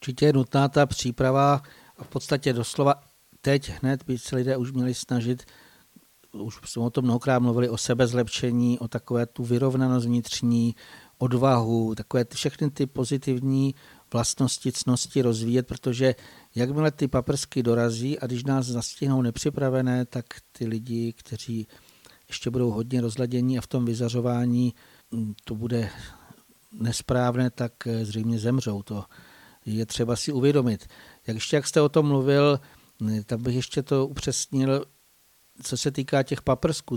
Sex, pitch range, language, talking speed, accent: male, 115-135 Hz, Czech, 145 wpm, native